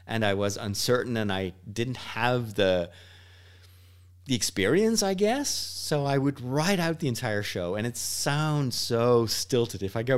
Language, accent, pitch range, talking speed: English, American, 95-135 Hz, 170 wpm